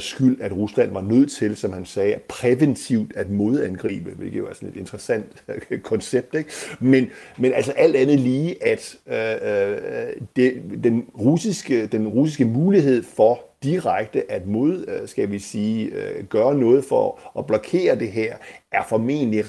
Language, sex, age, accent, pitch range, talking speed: Danish, male, 50-69, native, 105-150 Hz, 155 wpm